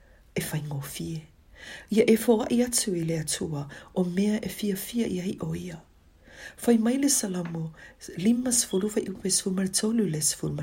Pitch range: 145-215 Hz